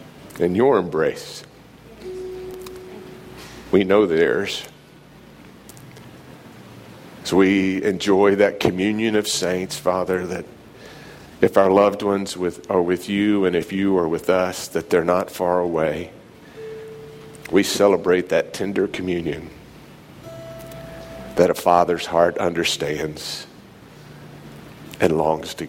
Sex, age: male, 50-69